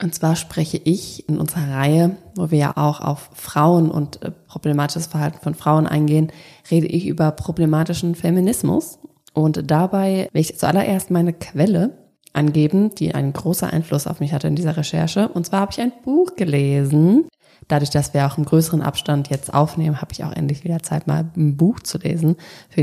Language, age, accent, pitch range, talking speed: German, 20-39, German, 155-185 Hz, 185 wpm